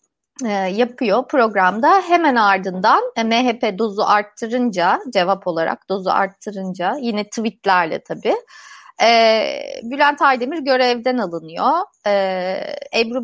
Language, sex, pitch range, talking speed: Turkish, female, 215-320 Hz, 85 wpm